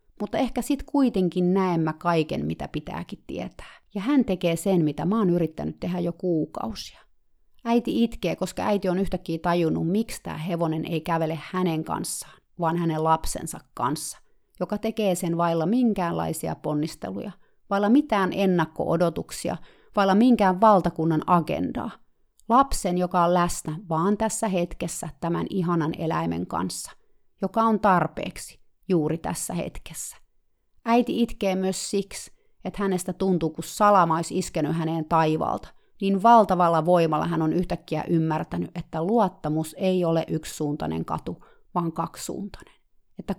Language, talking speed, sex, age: Finnish, 135 wpm, female, 30-49